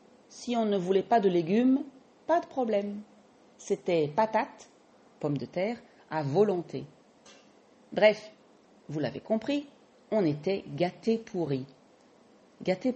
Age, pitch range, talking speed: 40-59, 165-240 Hz, 120 wpm